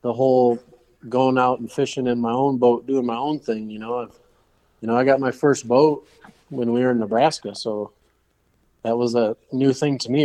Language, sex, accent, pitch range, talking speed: English, male, American, 115-140 Hz, 215 wpm